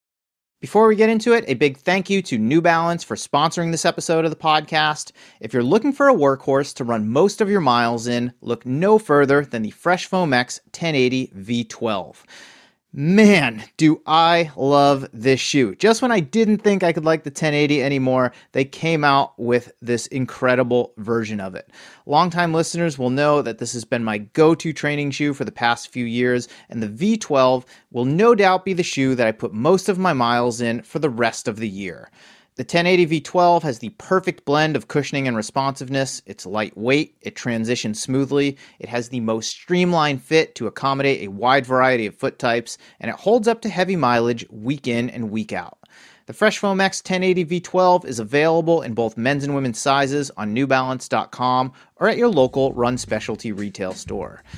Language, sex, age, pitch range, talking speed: English, male, 30-49, 120-170 Hz, 190 wpm